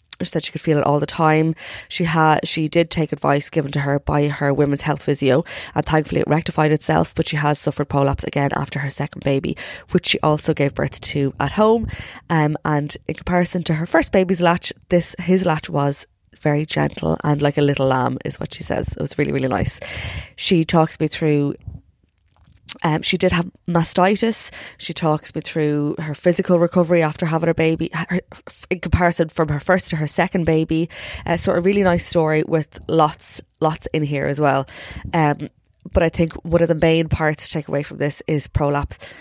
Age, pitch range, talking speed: 20-39, 145-170 Hz, 205 wpm